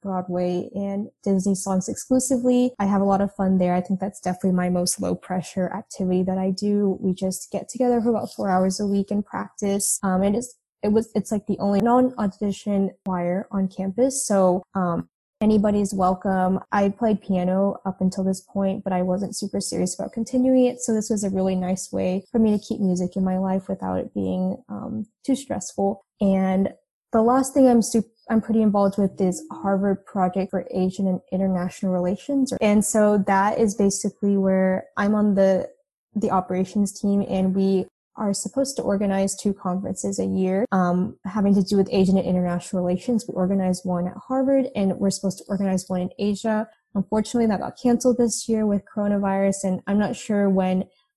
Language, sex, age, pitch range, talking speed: English, female, 10-29, 185-215 Hz, 190 wpm